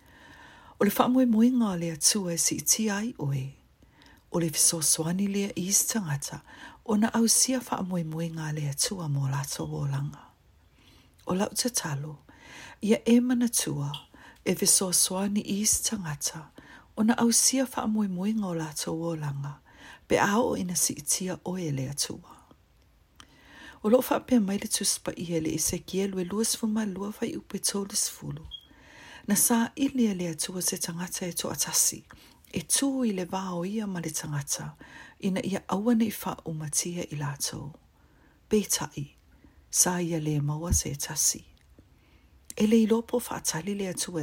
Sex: female